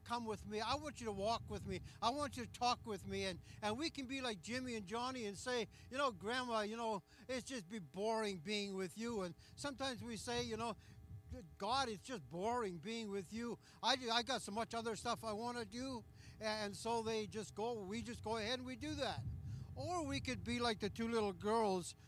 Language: English